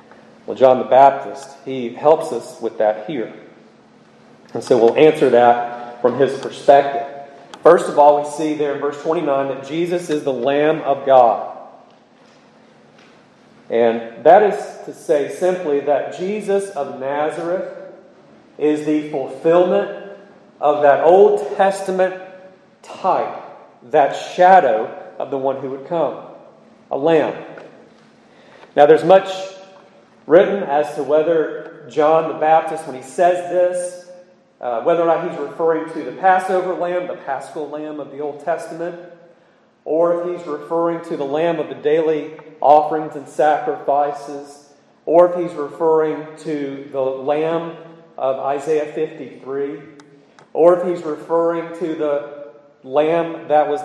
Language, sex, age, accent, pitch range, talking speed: English, male, 40-59, American, 140-175 Hz, 140 wpm